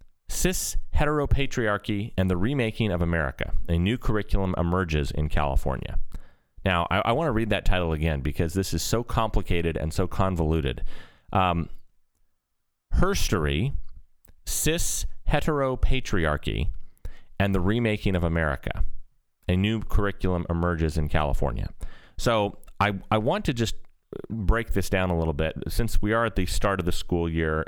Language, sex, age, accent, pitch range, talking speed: English, male, 30-49, American, 80-100 Hz, 145 wpm